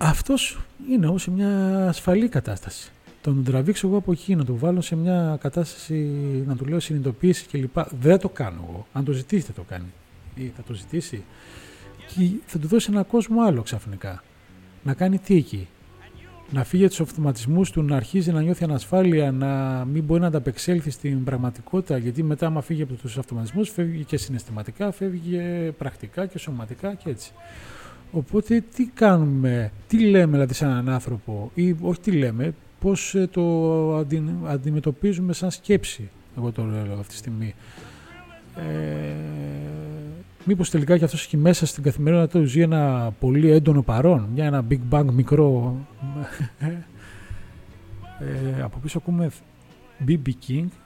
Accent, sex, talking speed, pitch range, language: native, male, 155 wpm, 120-170 Hz, Greek